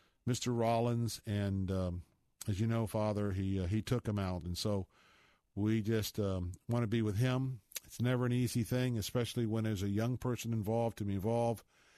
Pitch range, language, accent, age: 100-115 Hz, English, American, 50-69